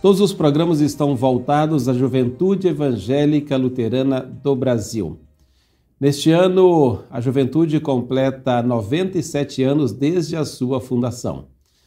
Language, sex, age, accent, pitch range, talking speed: Portuguese, male, 50-69, Brazilian, 130-160 Hz, 110 wpm